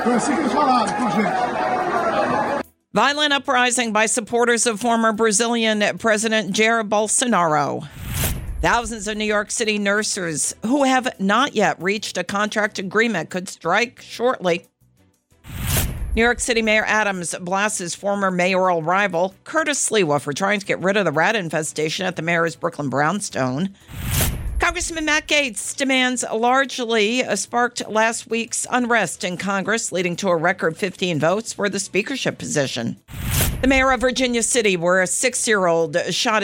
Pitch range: 180-230 Hz